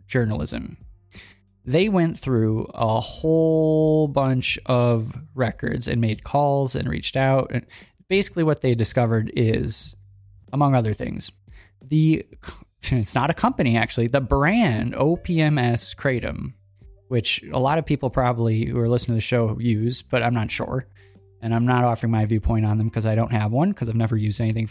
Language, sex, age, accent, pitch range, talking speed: English, male, 20-39, American, 110-145 Hz, 170 wpm